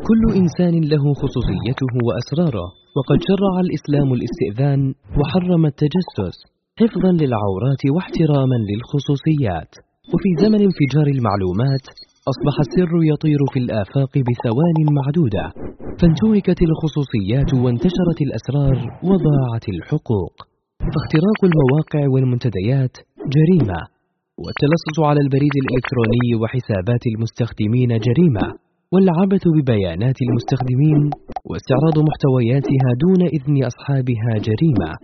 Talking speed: 90 wpm